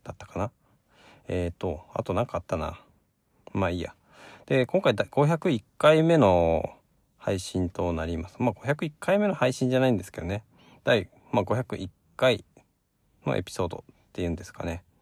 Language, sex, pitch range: Japanese, male, 90-125 Hz